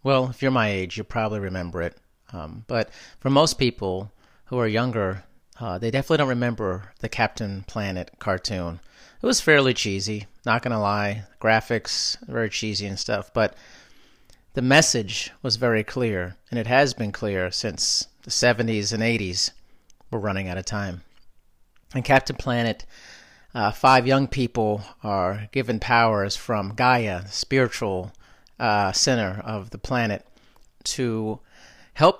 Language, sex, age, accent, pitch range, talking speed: English, male, 40-59, American, 100-125 Hz, 150 wpm